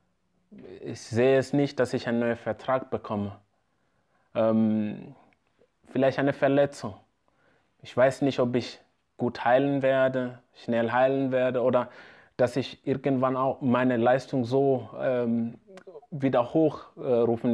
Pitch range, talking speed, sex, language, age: 115-140 Hz, 125 wpm, male, German, 20-39